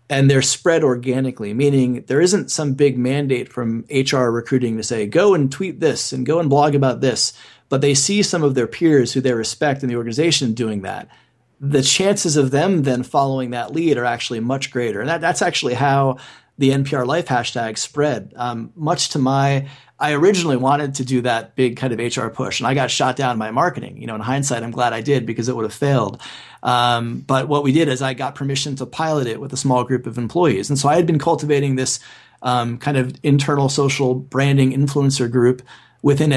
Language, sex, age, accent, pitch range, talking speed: English, male, 30-49, American, 125-140 Hz, 215 wpm